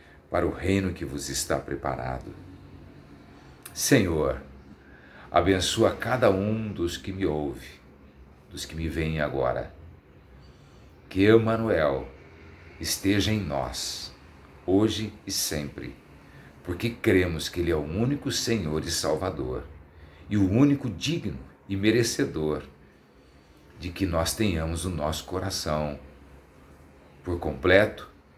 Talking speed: 110 wpm